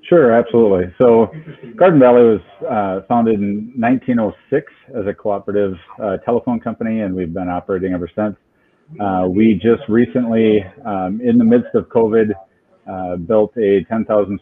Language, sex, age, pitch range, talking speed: English, male, 30-49, 95-115 Hz, 150 wpm